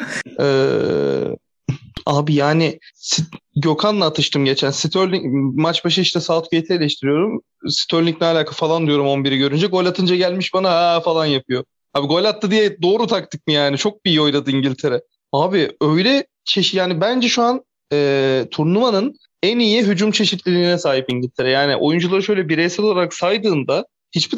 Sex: male